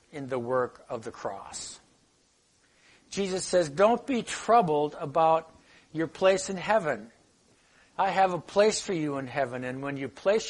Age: 60-79